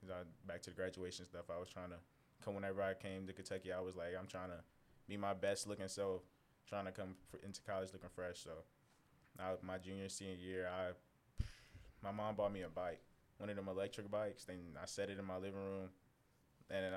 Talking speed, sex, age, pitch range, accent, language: 215 wpm, male, 20-39, 95-105 Hz, American, English